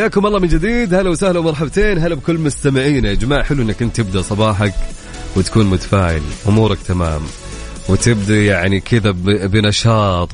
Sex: male